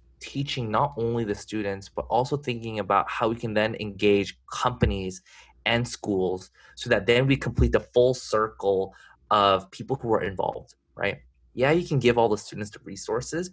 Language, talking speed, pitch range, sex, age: English, 175 wpm, 100-130 Hz, male, 20-39